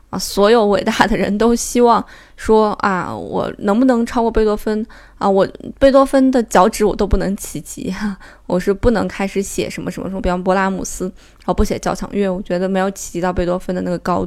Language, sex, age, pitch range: Chinese, female, 20-39, 185-225 Hz